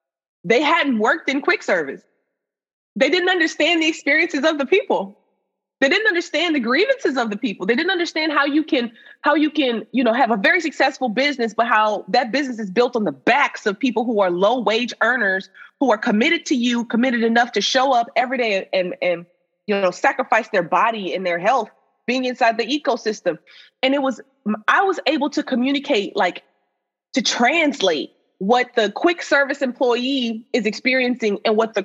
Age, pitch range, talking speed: 20-39, 210-275 Hz, 190 wpm